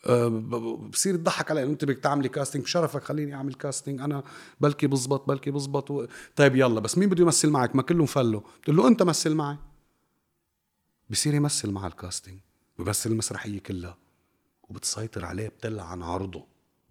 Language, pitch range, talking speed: Arabic, 105-145 Hz, 155 wpm